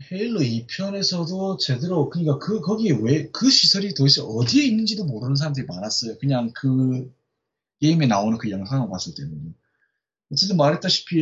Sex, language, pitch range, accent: male, Korean, 125-175 Hz, native